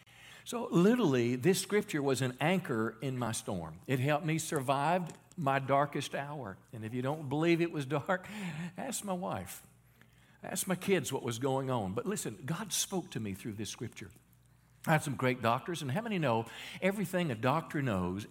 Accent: American